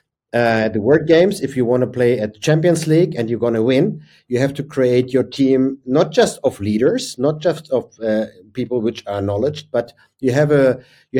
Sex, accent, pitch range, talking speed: male, German, 120-150 Hz, 220 wpm